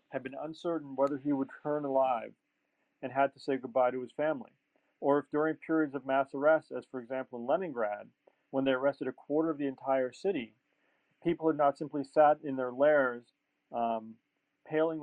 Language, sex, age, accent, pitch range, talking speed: English, male, 40-59, American, 130-155 Hz, 190 wpm